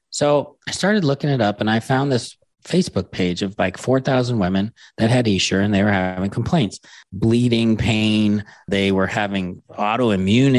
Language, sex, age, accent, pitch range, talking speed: English, male, 30-49, American, 100-130 Hz, 170 wpm